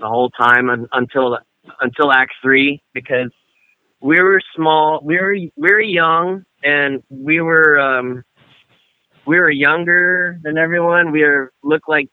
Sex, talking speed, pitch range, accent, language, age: male, 145 wpm, 130-165 Hz, American, English, 30-49